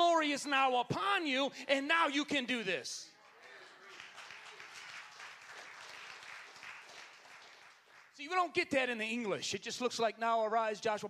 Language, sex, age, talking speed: English, male, 30-49, 140 wpm